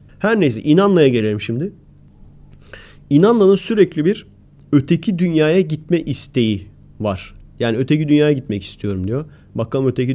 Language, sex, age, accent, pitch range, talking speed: Turkish, male, 30-49, native, 115-165 Hz, 125 wpm